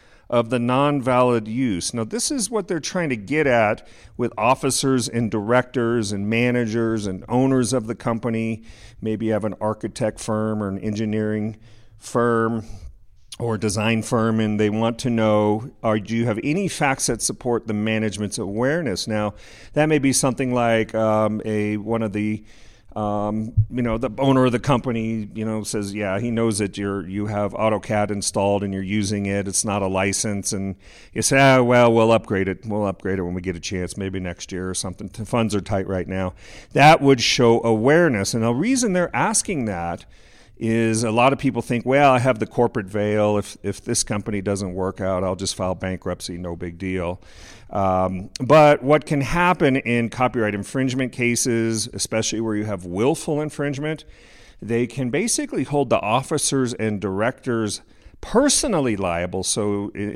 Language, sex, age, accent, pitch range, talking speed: English, male, 40-59, American, 100-125 Hz, 180 wpm